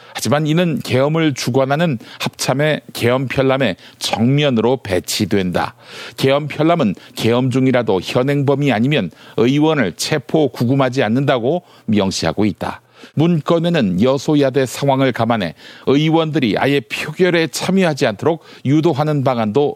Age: 50-69